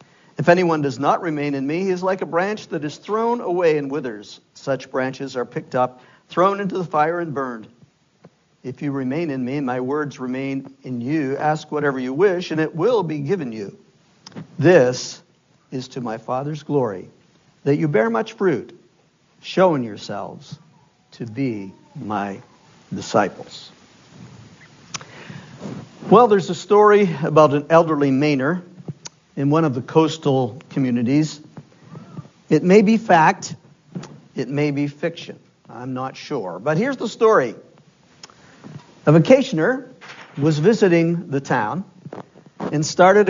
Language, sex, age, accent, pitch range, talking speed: English, male, 50-69, American, 140-185 Hz, 145 wpm